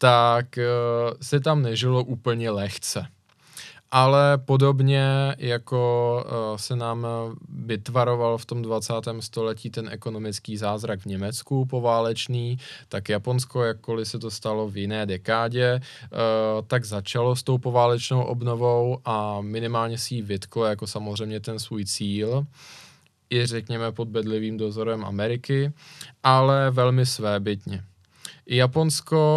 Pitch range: 110-130 Hz